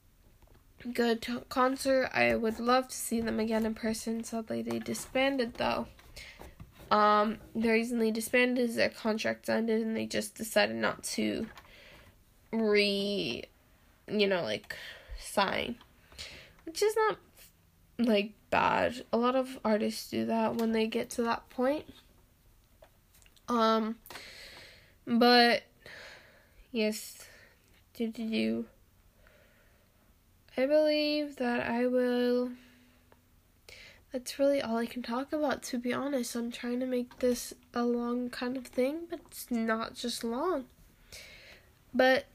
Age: 10-29